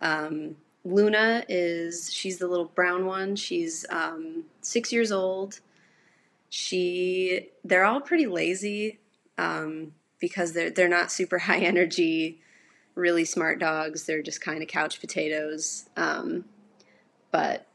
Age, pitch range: 20-39, 160-195 Hz